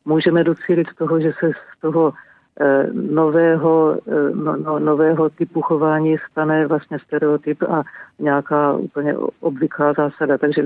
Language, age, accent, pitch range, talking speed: Czech, 50-69, native, 150-170 Hz, 115 wpm